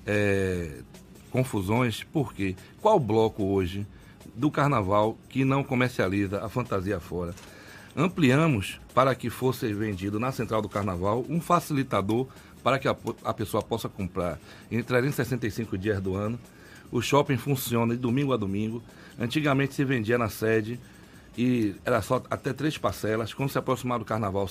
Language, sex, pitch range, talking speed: Portuguese, male, 105-140 Hz, 150 wpm